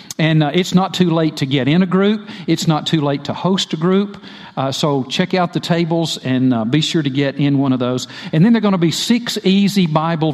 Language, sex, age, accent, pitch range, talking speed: English, male, 50-69, American, 140-175 Hz, 260 wpm